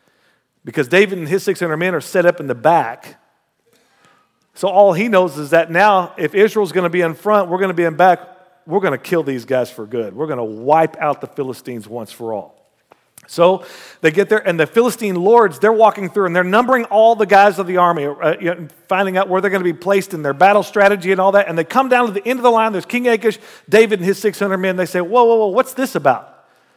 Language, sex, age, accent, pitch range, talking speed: English, male, 40-59, American, 175-240 Hz, 250 wpm